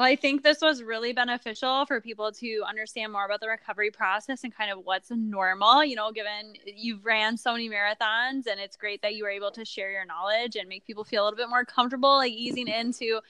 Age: 10-29